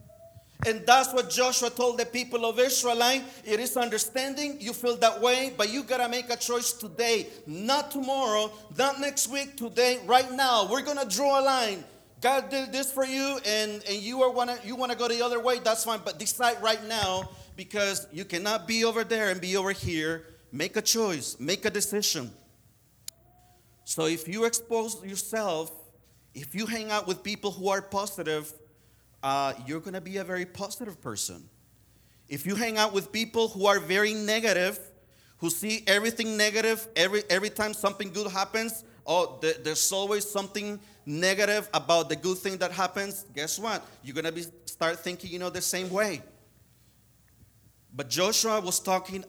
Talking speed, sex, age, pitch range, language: 175 wpm, male, 40-59, 155-230 Hz, English